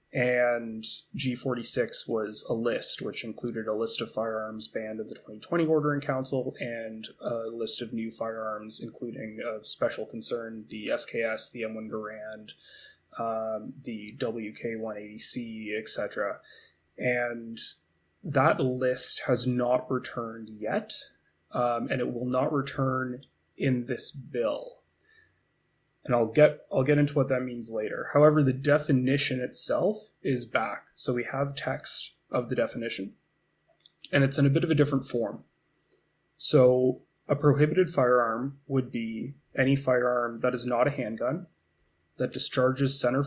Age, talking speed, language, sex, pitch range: 20-39, 135 wpm, English, male, 115-135 Hz